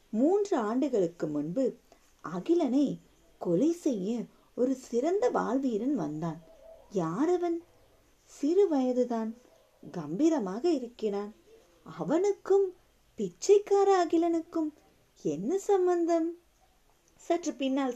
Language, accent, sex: Tamil, native, female